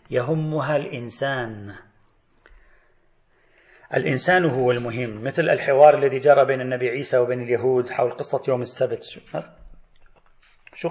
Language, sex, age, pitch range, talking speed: Arabic, male, 40-59, 130-200 Hz, 105 wpm